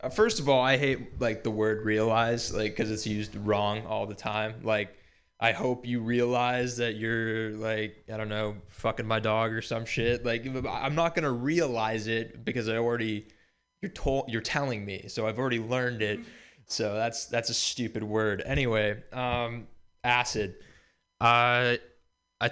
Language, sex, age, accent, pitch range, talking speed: English, male, 20-39, American, 110-140 Hz, 175 wpm